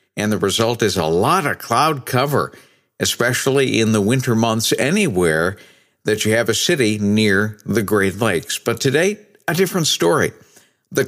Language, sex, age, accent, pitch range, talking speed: English, male, 60-79, American, 105-145 Hz, 160 wpm